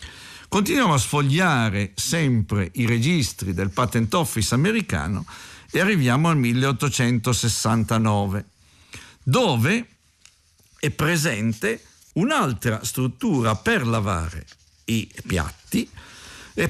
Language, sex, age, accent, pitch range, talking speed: Italian, male, 50-69, native, 110-155 Hz, 85 wpm